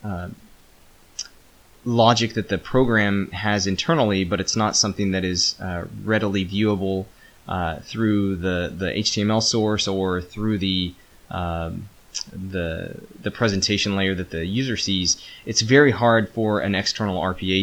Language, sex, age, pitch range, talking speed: English, male, 20-39, 90-110 Hz, 140 wpm